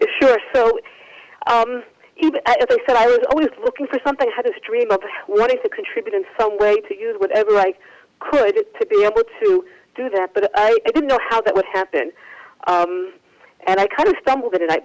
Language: English